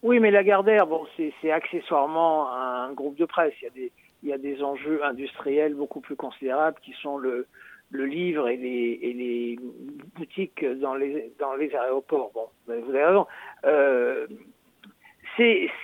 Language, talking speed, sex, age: French, 170 wpm, male, 60-79